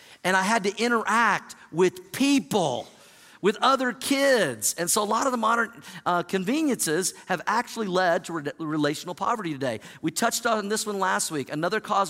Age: 50-69